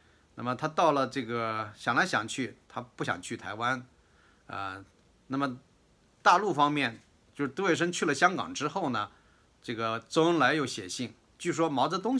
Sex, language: male, Chinese